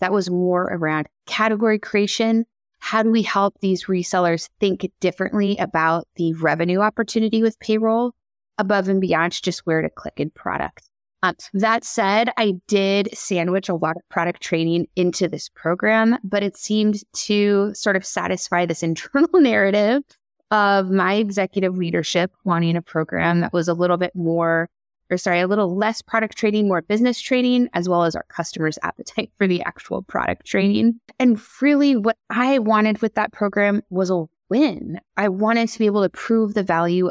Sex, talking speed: female, 175 wpm